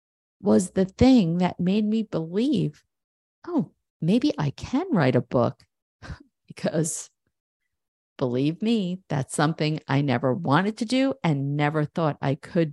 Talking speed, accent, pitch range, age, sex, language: 135 wpm, American, 130-195 Hz, 50-69, female, English